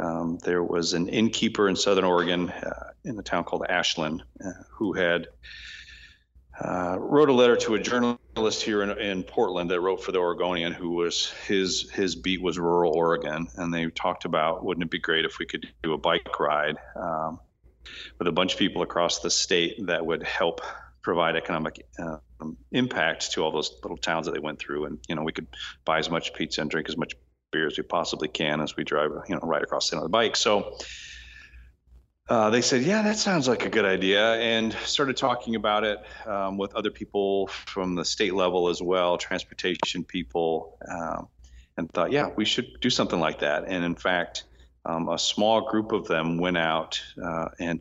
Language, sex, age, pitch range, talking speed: English, male, 40-59, 85-110 Hz, 200 wpm